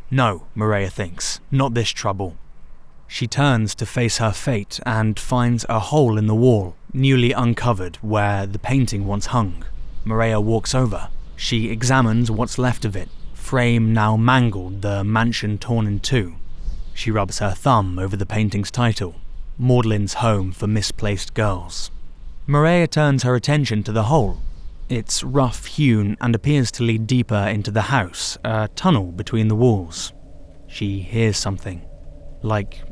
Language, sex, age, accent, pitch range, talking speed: English, male, 20-39, British, 95-120 Hz, 150 wpm